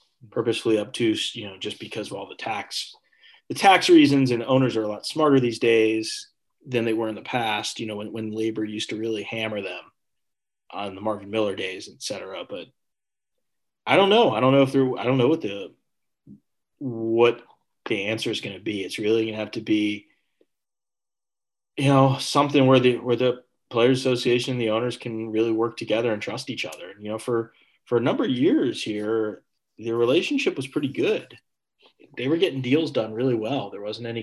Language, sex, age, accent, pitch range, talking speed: English, male, 20-39, American, 110-130 Hz, 205 wpm